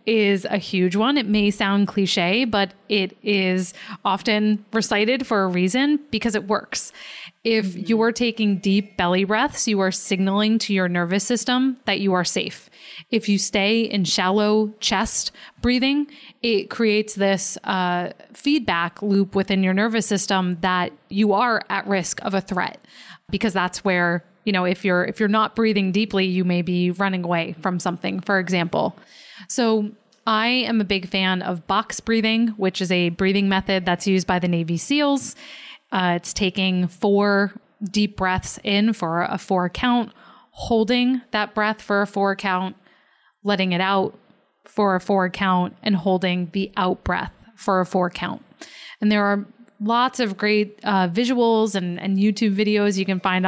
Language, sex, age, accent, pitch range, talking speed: English, female, 20-39, American, 185-220 Hz, 170 wpm